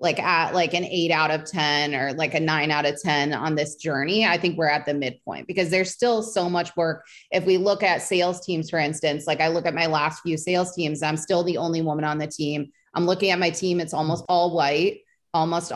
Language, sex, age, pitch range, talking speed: English, female, 20-39, 155-195 Hz, 250 wpm